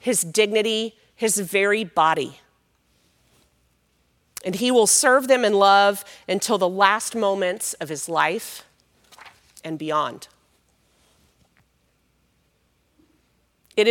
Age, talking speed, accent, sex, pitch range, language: 40-59, 95 wpm, American, female, 175-220 Hz, English